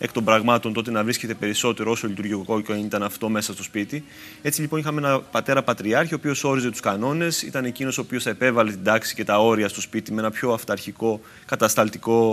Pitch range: 105-135 Hz